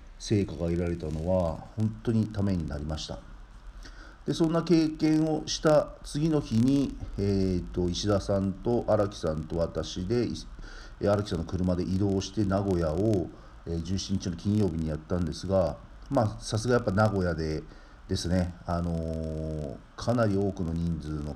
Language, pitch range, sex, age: Japanese, 85-110 Hz, male, 50-69